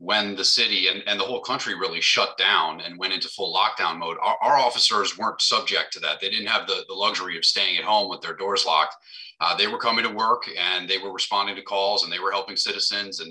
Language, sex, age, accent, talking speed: English, male, 30-49, American, 250 wpm